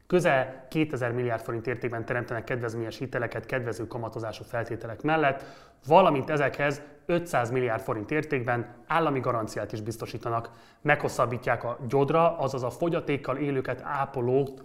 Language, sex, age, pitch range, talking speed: Hungarian, male, 30-49, 115-140 Hz, 125 wpm